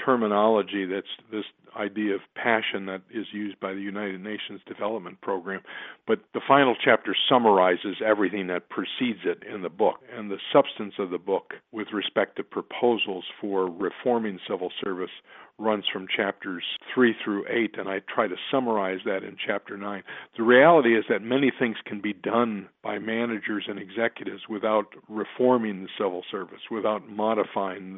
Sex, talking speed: male, 165 wpm